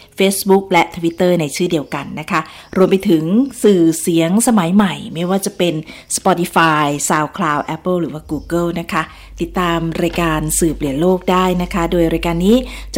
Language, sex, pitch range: Thai, female, 155-195 Hz